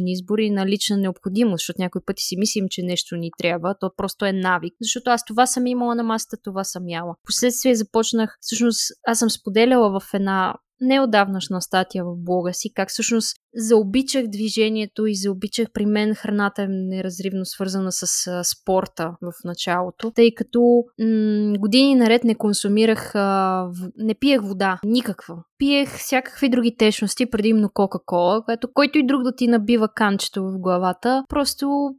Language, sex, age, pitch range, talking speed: Bulgarian, female, 20-39, 190-235 Hz, 160 wpm